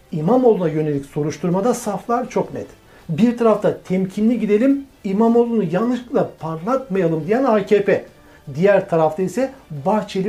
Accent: native